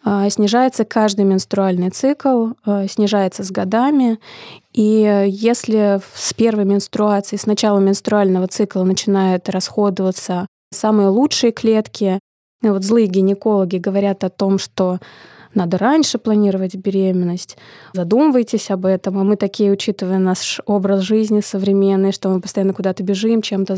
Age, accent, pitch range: 20-39, native, 195-220 Hz